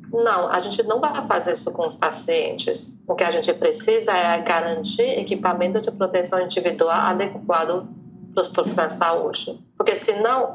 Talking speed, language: 165 wpm, Portuguese